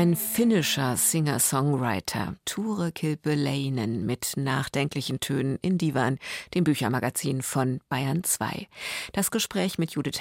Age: 50-69